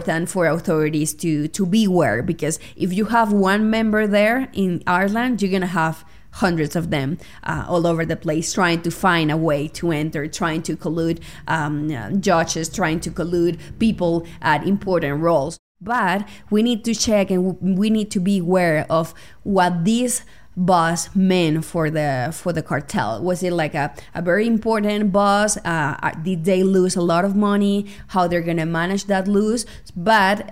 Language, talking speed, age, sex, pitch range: English, 180 wpm, 20-39, female, 165-200 Hz